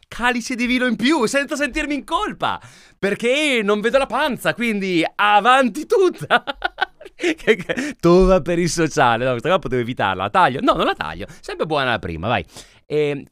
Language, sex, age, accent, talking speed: Italian, male, 30-49, native, 175 wpm